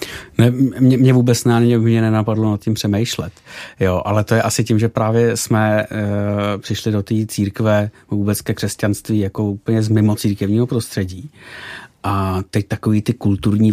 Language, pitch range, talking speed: Czech, 105-125 Hz, 165 wpm